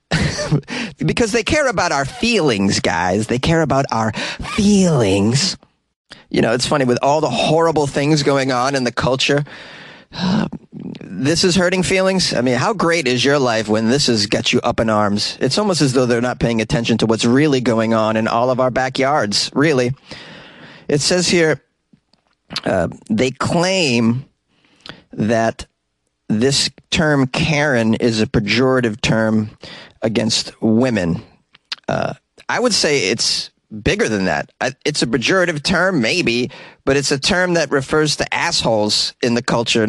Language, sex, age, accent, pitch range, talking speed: English, male, 30-49, American, 115-155 Hz, 155 wpm